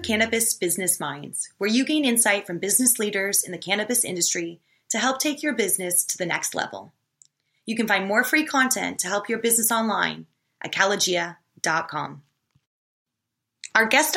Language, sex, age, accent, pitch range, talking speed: English, female, 20-39, American, 175-225 Hz, 160 wpm